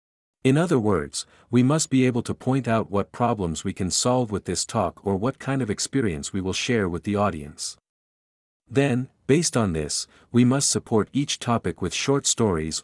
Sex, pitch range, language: male, 90-125 Hz, German